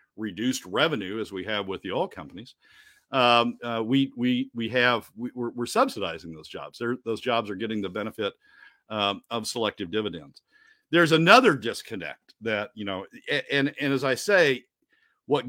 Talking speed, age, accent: 170 wpm, 50-69, American